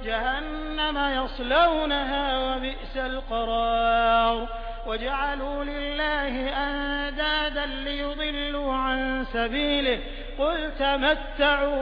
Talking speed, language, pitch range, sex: 60 wpm, Hindi, 240-285 Hz, male